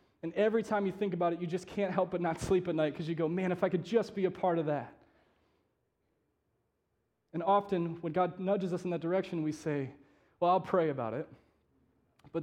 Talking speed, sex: 220 wpm, male